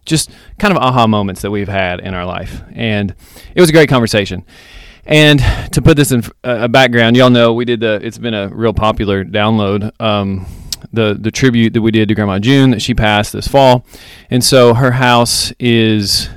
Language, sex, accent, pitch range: English, male, American, 100-125 Hz